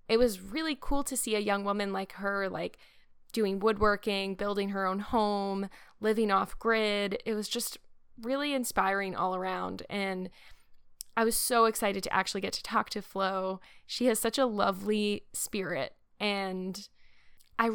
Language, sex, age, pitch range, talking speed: English, female, 10-29, 190-215 Hz, 160 wpm